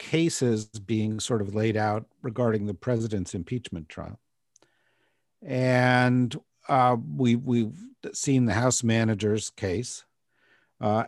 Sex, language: male, English